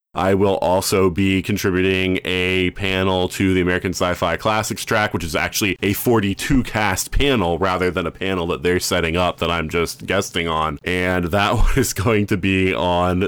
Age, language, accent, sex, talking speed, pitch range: 30-49, English, American, male, 180 wpm, 90-110 Hz